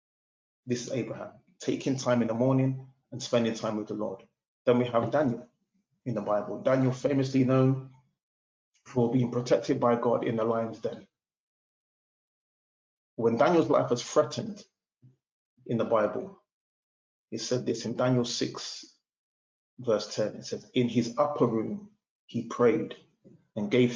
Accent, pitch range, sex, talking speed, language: British, 115-130 Hz, male, 150 wpm, English